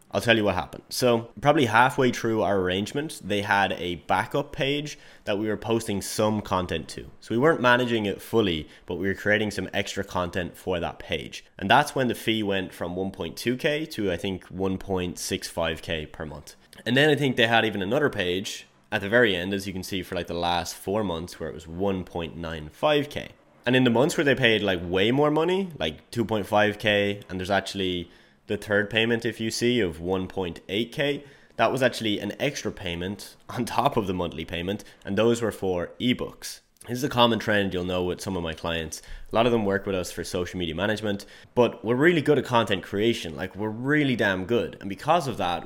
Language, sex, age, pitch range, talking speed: English, male, 20-39, 90-115 Hz, 210 wpm